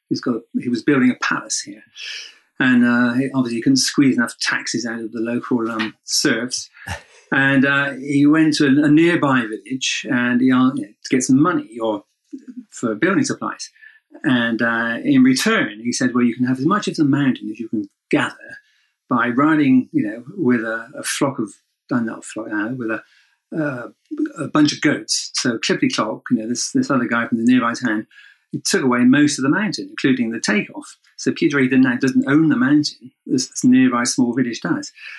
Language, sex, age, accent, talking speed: English, male, 50-69, British, 210 wpm